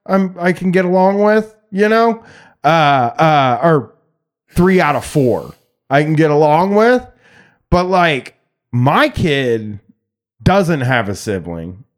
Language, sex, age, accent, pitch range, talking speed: English, male, 30-49, American, 150-190 Hz, 135 wpm